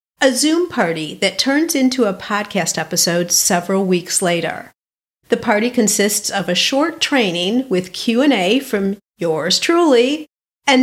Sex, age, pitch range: female, 40-59, 190-270 Hz